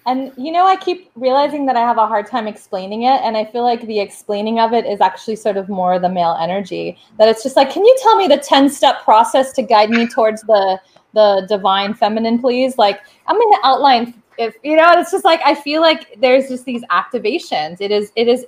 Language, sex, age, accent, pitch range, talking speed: English, female, 20-39, American, 205-260 Hz, 230 wpm